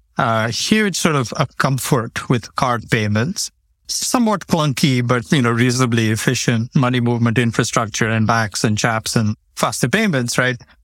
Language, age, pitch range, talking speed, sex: English, 60-79, 115-140 Hz, 155 wpm, male